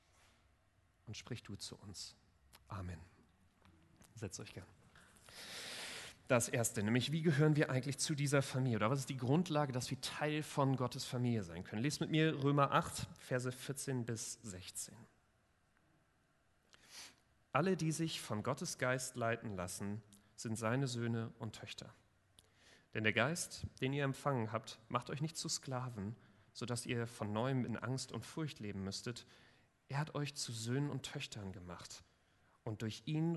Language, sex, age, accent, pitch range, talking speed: German, male, 40-59, German, 105-140 Hz, 160 wpm